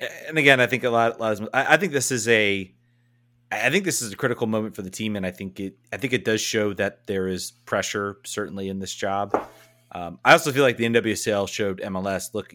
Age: 30-49